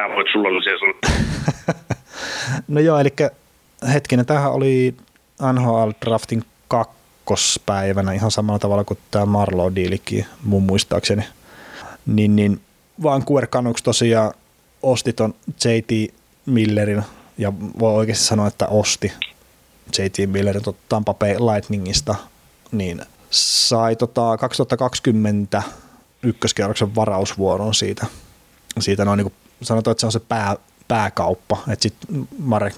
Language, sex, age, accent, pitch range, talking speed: Finnish, male, 30-49, native, 100-115 Hz, 105 wpm